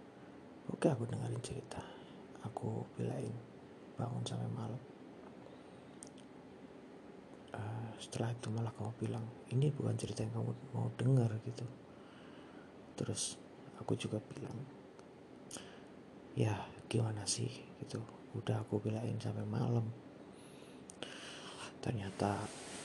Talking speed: 95 wpm